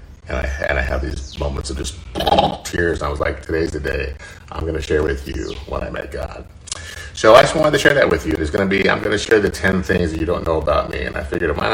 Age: 40-59